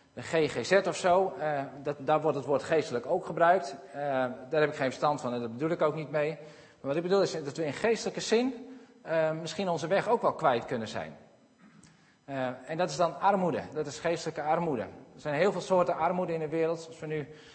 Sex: male